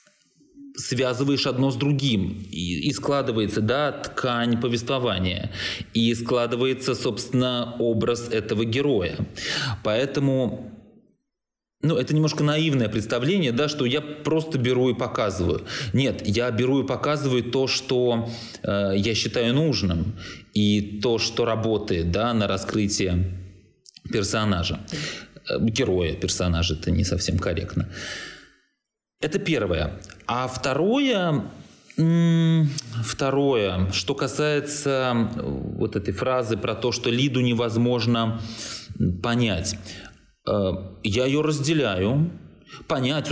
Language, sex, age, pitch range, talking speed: Russian, male, 20-39, 105-140 Hz, 105 wpm